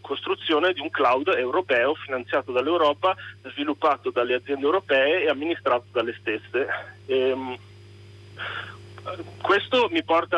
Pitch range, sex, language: 130-165 Hz, male, Italian